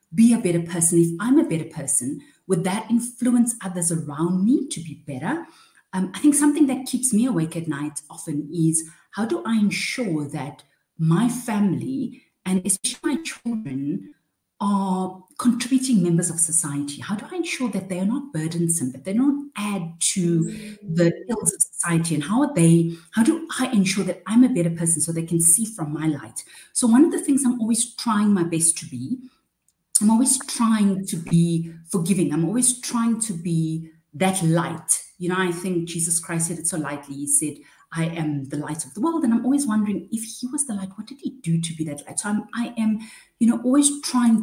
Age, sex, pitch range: 30-49, female, 165-235 Hz